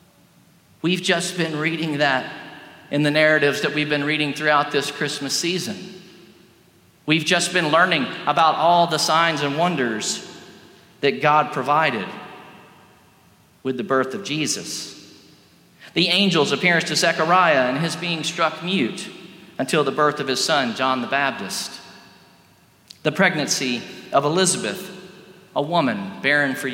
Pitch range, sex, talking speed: 145-180 Hz, male, 135 wpm